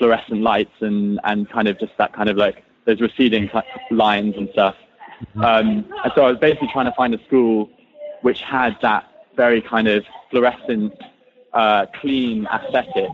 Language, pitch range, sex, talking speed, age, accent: English, 105-140 Hz, male, 170 wpm, 20-39, British